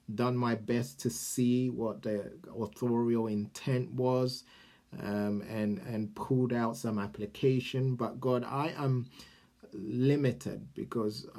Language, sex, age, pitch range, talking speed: English, male, 30-49, 110-130 Hz, 120 wpm